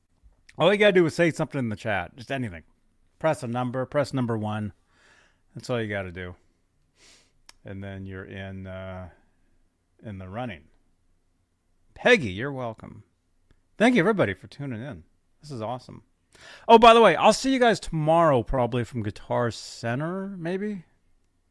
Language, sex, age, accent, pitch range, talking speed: English, male, 30-49, American, 95-155 Hz, 165 wpm